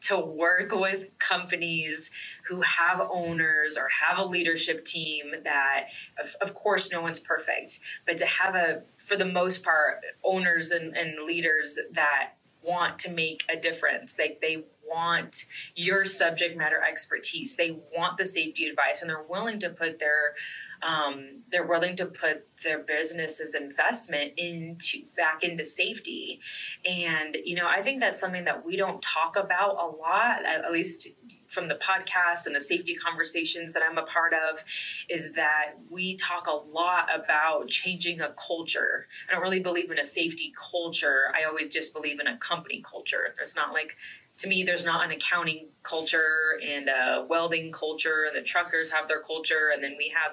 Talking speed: 175 wpm